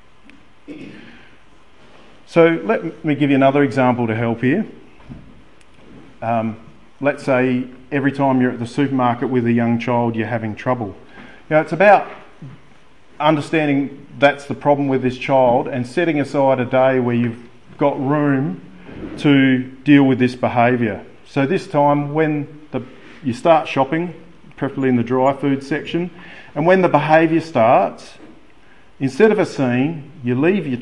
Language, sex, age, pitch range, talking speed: English, male, 40-59, 120-145 Hz, 145 wpm